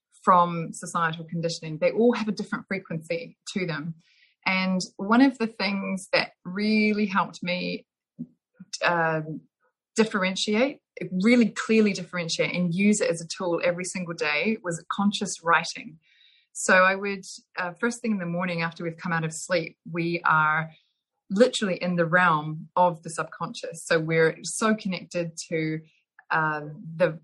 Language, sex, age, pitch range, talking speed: English, female, 20-39, 170-210 Hz, 150 wpm